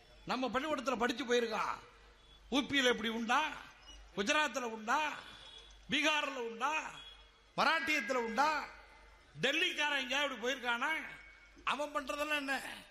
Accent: native